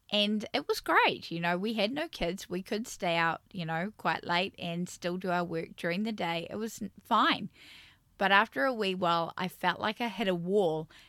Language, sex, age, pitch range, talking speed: English, female, 10-29, 170-200 Hz, 220 wpm